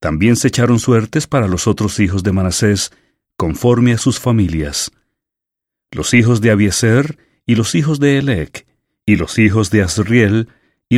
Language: English